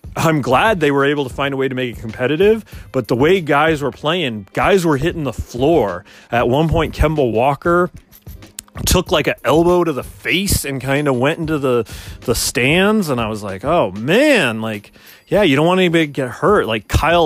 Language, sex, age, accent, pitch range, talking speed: English, male, 30-49, American, 105-145 Hz, 215 wpm